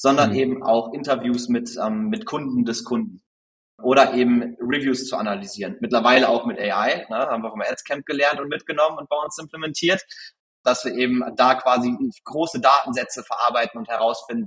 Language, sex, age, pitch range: German, male, 30-49, 115-145 Hz